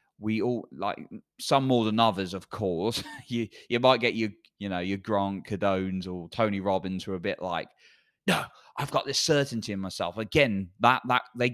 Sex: male